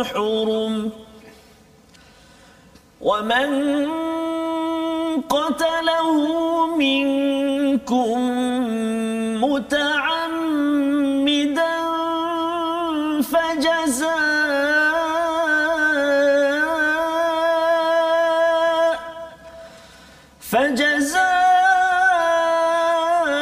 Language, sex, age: Malayalam, male, 40-59